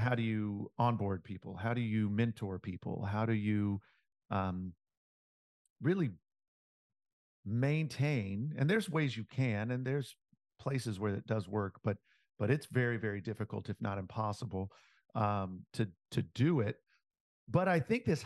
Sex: male